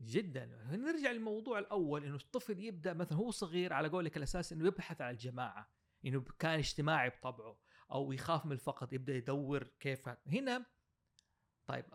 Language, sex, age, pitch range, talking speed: Arabic, male, 30-49, 135-185 Hz, 155 wpm